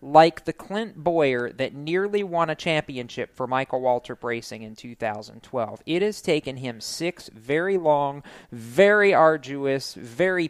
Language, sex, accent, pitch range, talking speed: English, male, American, 120-160 Hz, 145 wpm